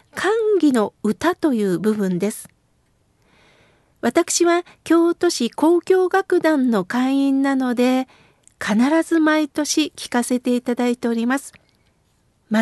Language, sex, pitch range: Japanese, female, 235-315 Hz